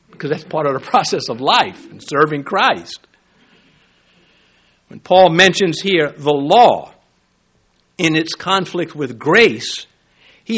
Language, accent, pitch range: English, American, 140-210 Hz